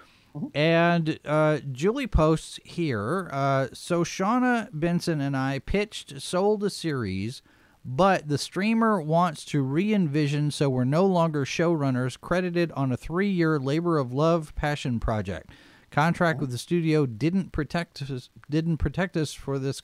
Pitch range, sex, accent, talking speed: 130-170 Hz, male, American, 140 wpm